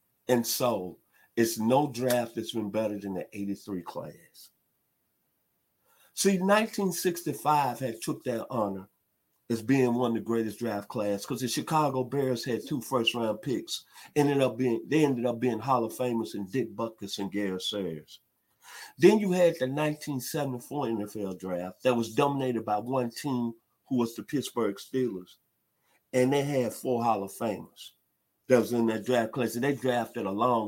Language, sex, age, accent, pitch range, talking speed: English, male, 50-69, American, 110-130 Hz, 170 wpm